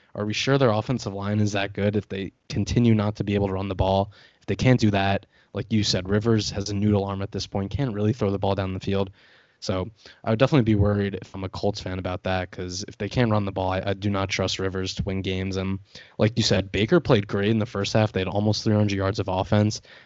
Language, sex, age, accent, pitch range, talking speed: English, male, 20-39, American, 95-110 Hz, 270 wpm